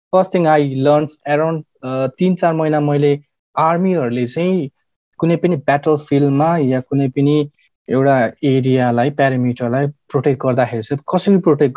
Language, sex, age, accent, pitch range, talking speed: English, male, 20-39, Indian, 120-150 Hz, 140 wpm